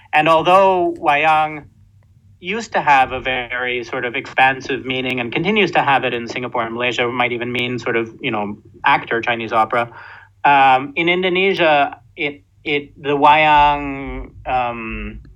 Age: 30-49